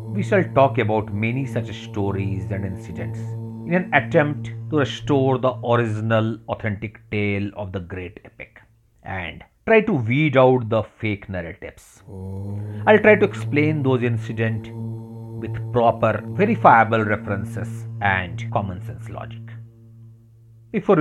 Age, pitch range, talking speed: 40-59, 105-115 Hz, 130 wpm